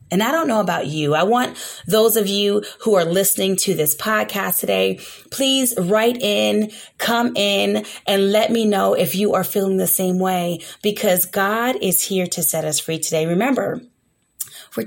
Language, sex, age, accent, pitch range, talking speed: English, female, 30-49, American, 185-240 Hz, 180 wpm